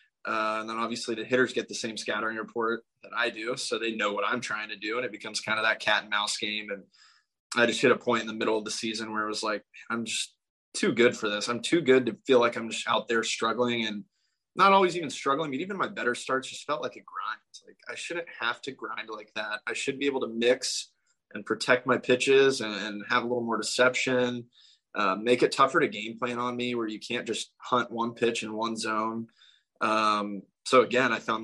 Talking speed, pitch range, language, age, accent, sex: 245 wpm, 110-120 Hz, English, 20-39, American, male